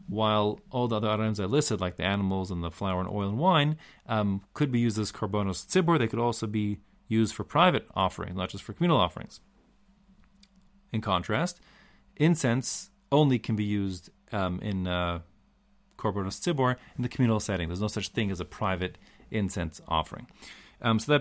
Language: English